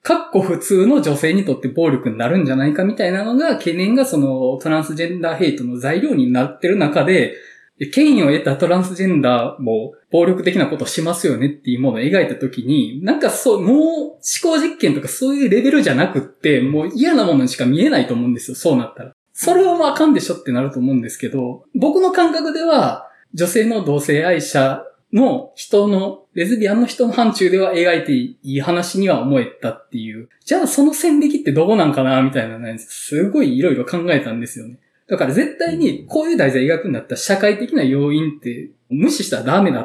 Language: Japanese